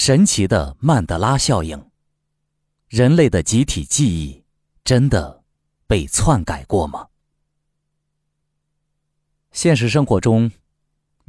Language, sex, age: Chinese, male, 30-49